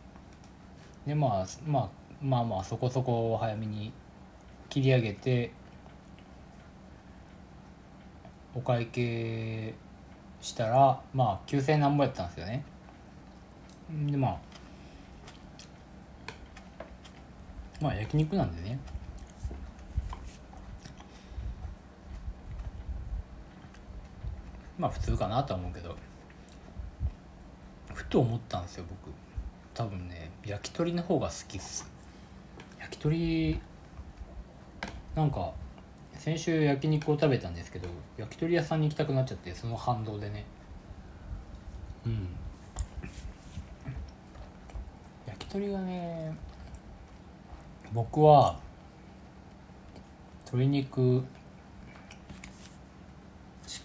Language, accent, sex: Japanese, native, male